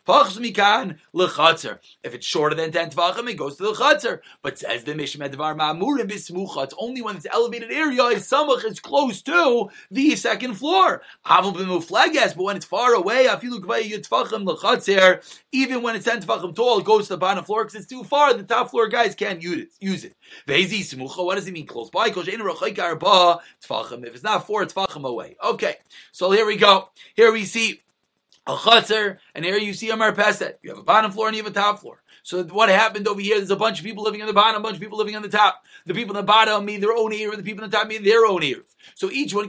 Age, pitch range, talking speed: 30-49, 195-245 Hz, 235 wpm